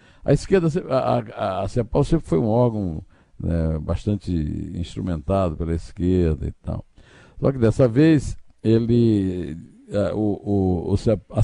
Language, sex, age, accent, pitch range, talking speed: Portuguese, male, 60-79, Brazilian, 85-120 Hz, 110 wpm